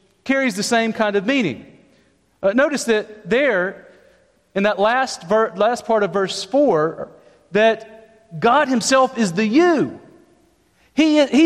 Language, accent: English, American